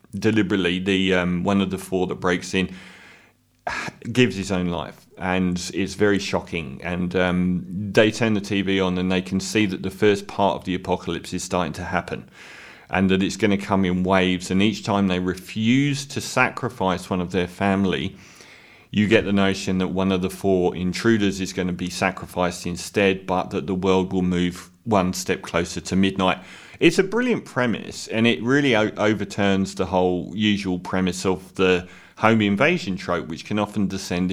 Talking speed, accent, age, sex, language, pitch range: 185 wpm, British, 30-49, male, English, 90-110 Hz